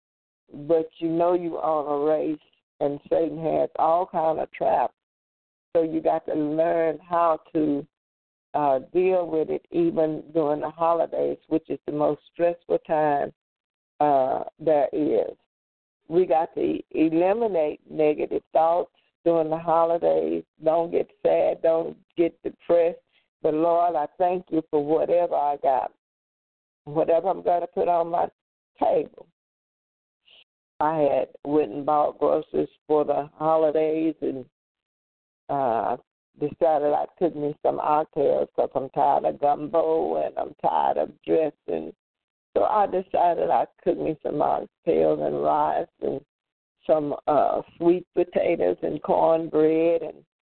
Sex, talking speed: female, 135 wpm